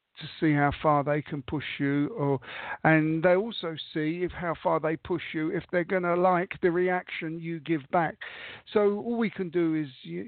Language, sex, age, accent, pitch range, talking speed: English, male, 50-69, British, 145-175 Hz, 210 wpm